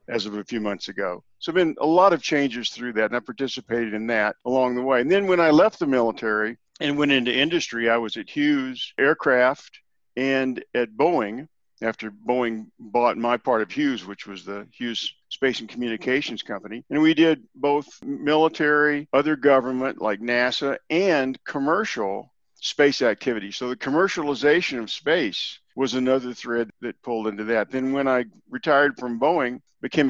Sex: male